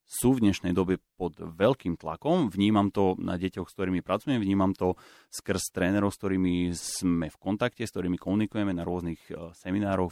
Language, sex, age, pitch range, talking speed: Slovak, male, 30-49, 95-115 Hz, 170 wpm